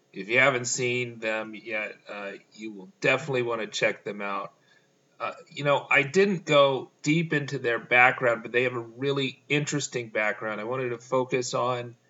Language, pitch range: English, 105-130 Hz